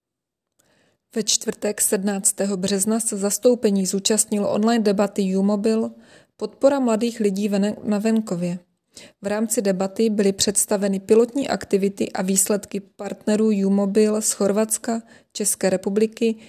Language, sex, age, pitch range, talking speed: Czech, female, 20-39, 200-225 Hz, 115 wpm